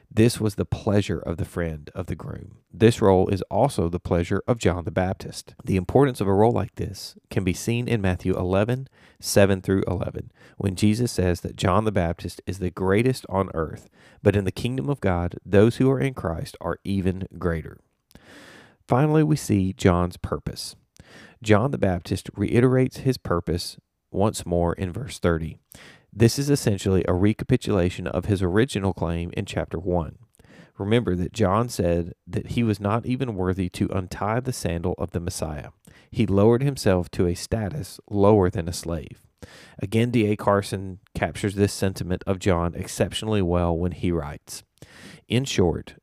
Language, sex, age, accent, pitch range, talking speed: English, male, 30-49, American, 90-115 Hz, 170 wpm